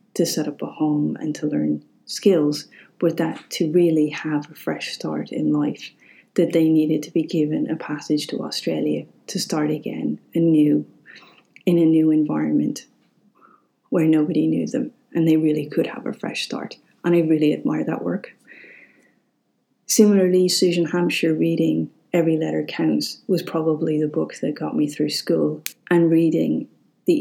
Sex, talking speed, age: female, 160 wpm, 30-49